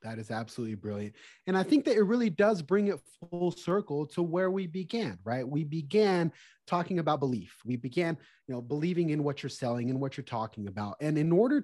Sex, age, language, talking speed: male, 30-49, English, 215 wpm